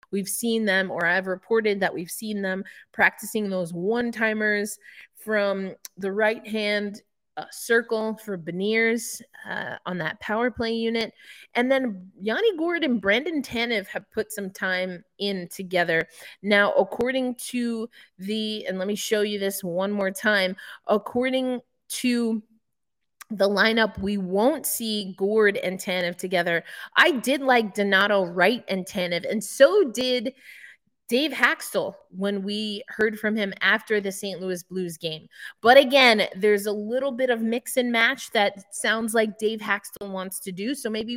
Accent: American